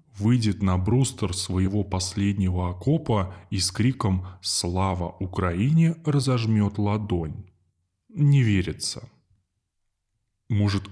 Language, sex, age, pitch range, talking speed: Russian, male, 20-39, 95-125 Hz, 100 wpm